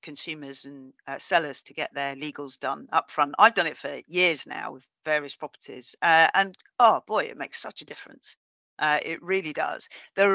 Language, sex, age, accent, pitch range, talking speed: English, female, 40-59, British, 150-190 Hz, 190 wpm